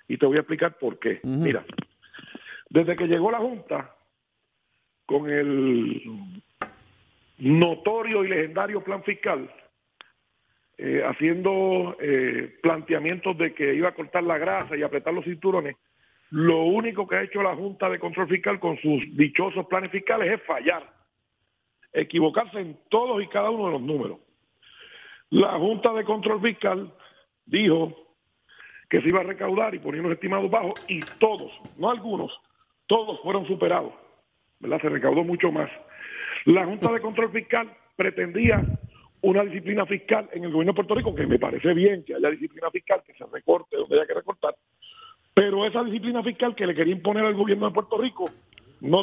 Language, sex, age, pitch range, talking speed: Spanish, male, 50-69, 165-220 Hz, 165 wpm